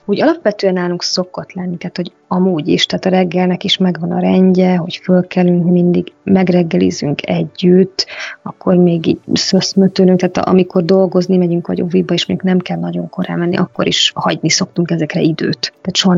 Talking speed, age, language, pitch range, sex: 170 wpm, 20-39, Hungarian, 175-190 Hz, female